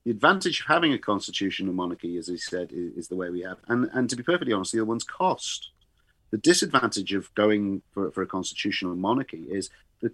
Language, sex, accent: English, male, British